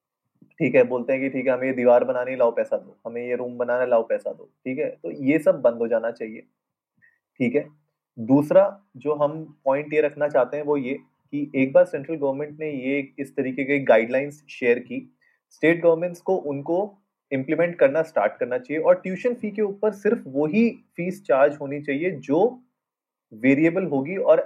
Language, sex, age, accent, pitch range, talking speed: Hindi, male, 30-49, native, 130-185 Hz, 140 wpm